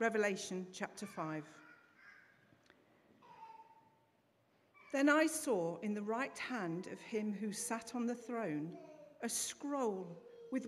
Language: English